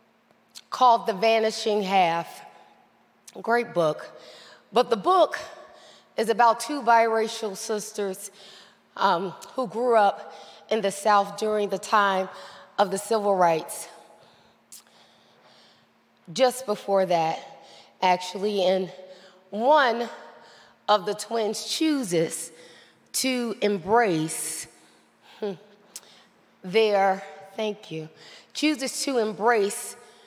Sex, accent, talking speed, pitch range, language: female, American, 90 wpm, 195-240 Hz, English